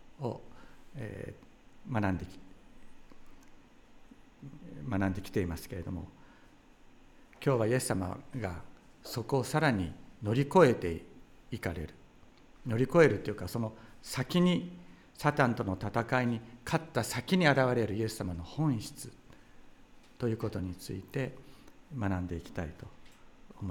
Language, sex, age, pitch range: Japanese, male, 60-79, 95-125 Hz